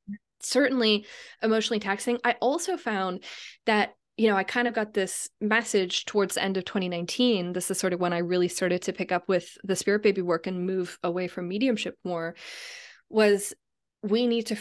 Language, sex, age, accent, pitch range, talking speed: English, female, 20-39, American, 180-230 Hz, 190 wpm